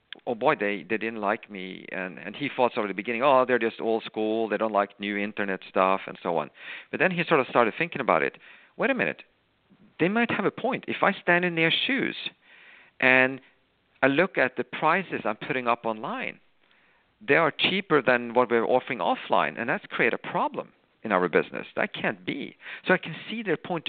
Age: 50-69